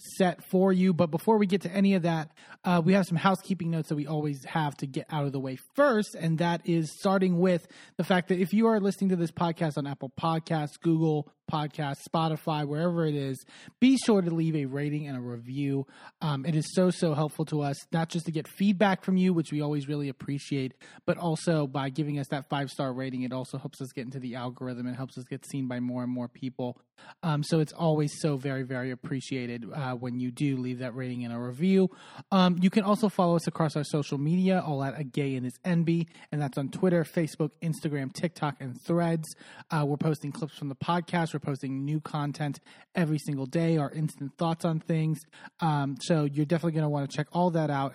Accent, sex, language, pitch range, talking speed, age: American, male, English, 140-170 Hz, 230 wpm, 20-39